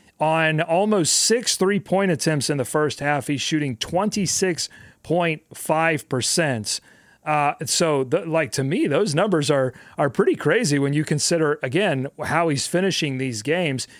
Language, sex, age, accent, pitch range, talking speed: English, male, 40-59, American, 140-170 Hz, 150 wpm